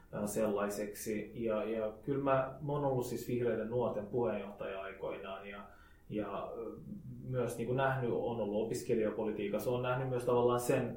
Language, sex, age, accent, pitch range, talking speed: Finnish, male, 20-39, native, 105-125 Hz, 140 wpm